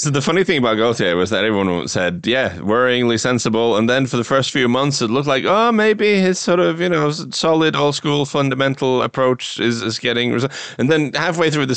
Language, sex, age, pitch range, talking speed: English, male, 30-49, 95-125 Hz, 225 wpm